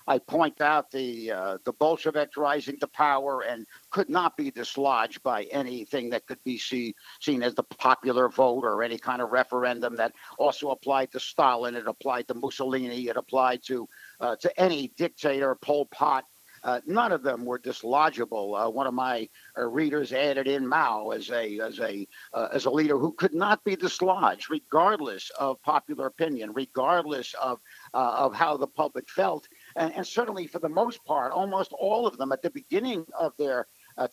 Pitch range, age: 125-165 Hz, 60-79